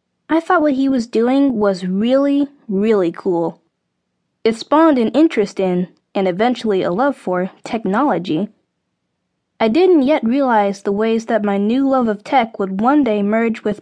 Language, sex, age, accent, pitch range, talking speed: English, female, 10-29, American, 200-275 Hz, 165 wpm